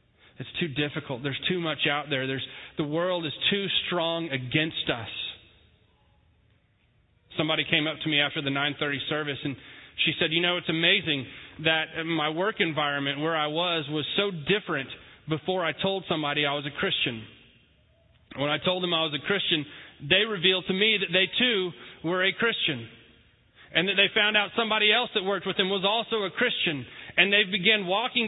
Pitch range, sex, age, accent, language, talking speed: 150-205 Hz, male, 30-49, American, English, 185 wpm